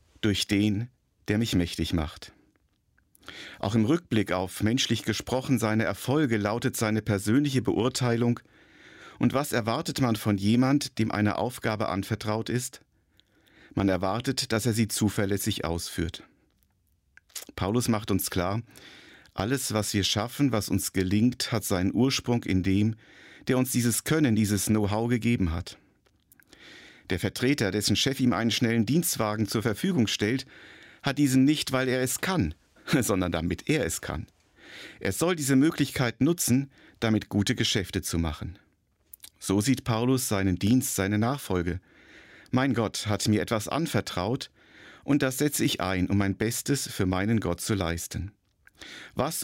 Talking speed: 145 wpm